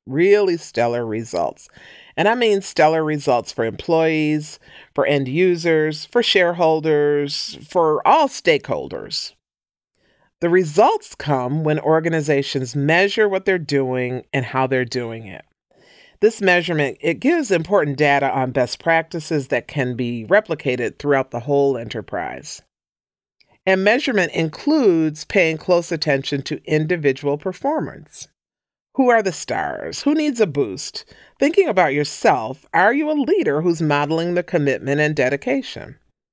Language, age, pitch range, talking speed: English, 40-59, 135-185 Hz, 130 wpm